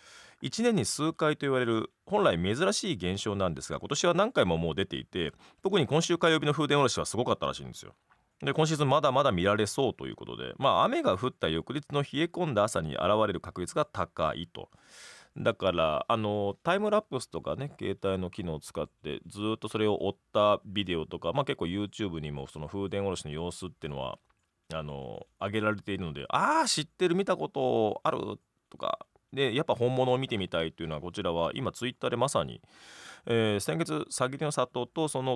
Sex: male